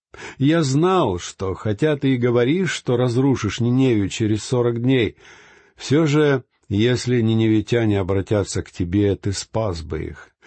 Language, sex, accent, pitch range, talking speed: Russian, male, native, 105-140 Hz, 140 wpm